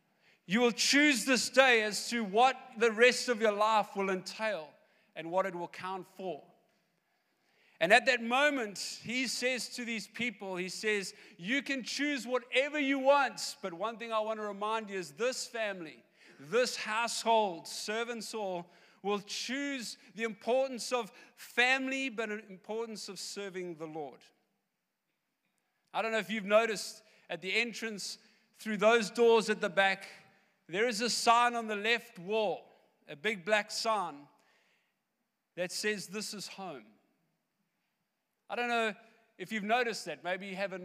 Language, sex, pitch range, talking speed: English, male, 195-235 Hz, 160 wpm